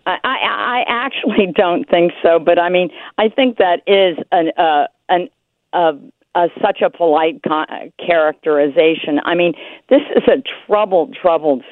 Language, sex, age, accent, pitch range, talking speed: English, female, 50-69, American, 165-215 Hz, 155 wpm